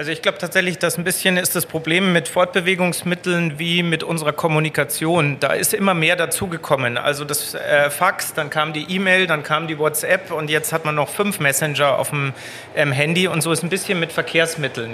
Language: German